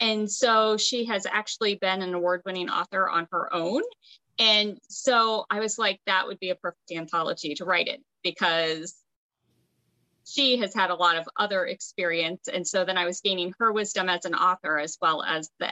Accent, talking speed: American, 190 wpm